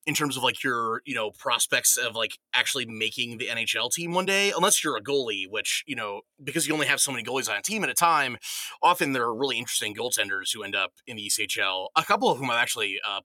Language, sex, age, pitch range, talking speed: English, male, 20-39, 125-175 Hz, 255 wpm